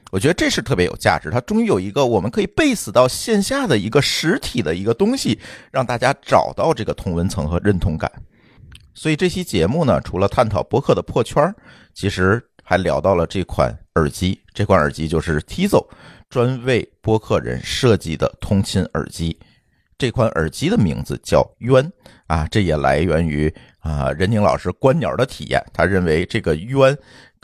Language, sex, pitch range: Chinese, male, 80-125 Hz